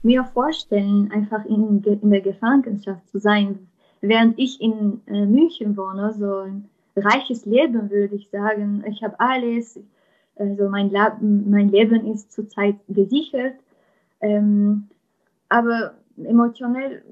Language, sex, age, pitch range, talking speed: German, female, 20-39, 205-235 Hz, 130 wpm